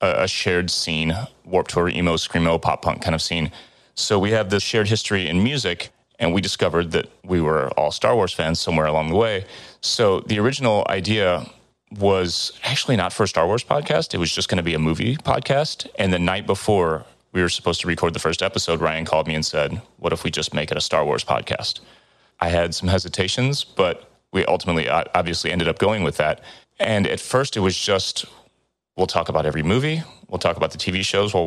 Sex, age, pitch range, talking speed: male, 30-49, 80-95 Hz, 215 wpm